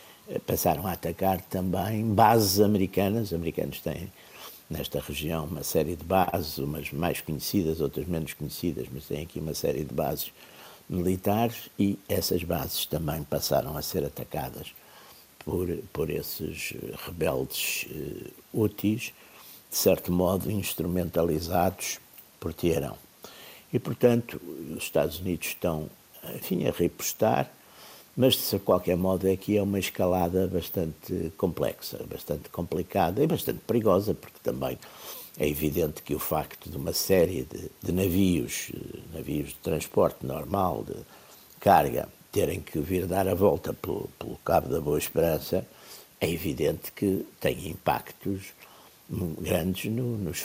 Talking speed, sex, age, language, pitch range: 130 wpm, male, 60-79, Portuguese, 80-95 Hz